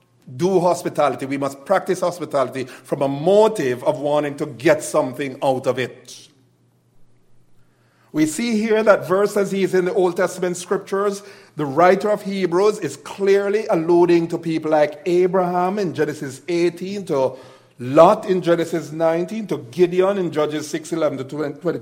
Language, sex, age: English, male, 50-69